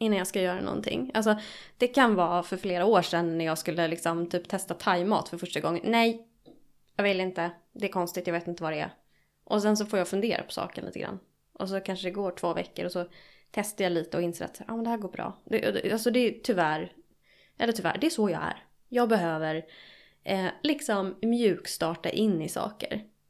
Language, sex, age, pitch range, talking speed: Swedish, female, 20-39, 170-215 Hz, 225 wpm